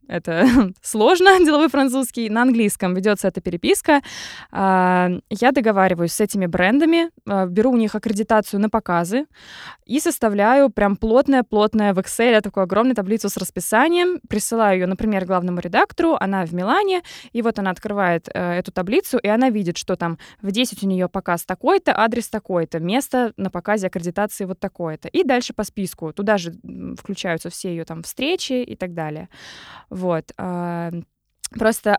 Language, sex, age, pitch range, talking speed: Russian, female, 20-39, 190-250 Hz, 155 wpm